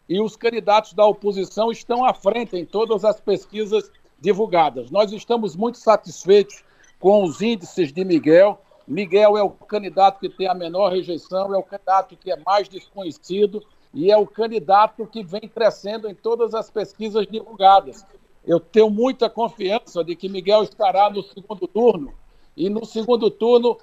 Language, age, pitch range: Portuguese, 60-79, 190-220 Hz